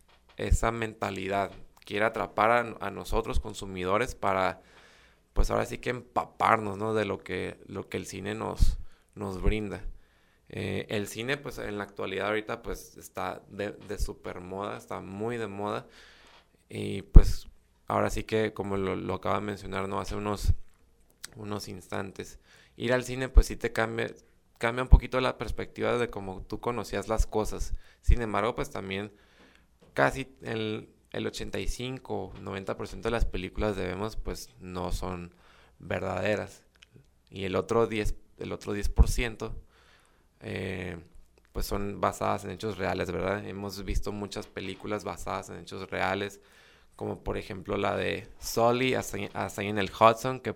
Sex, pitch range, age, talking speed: male, 95-110 Hz, 20-39, 155 wpm